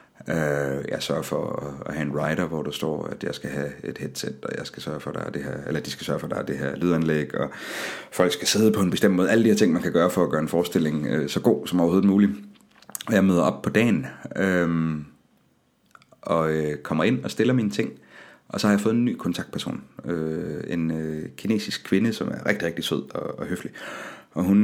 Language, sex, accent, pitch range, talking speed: Danish, male, native, 80-110 Hz, 205 wpm